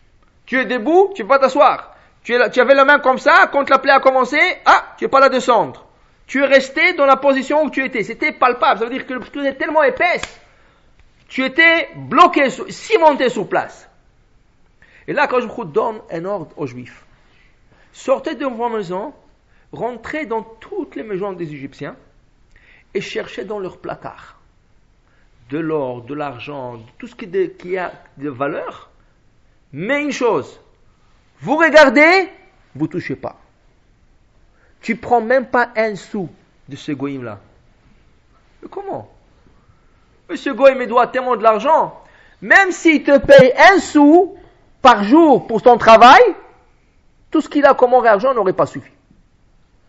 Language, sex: English, male